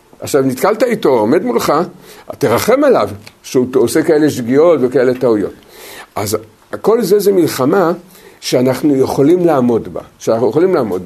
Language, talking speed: Hebrew, 135 wpm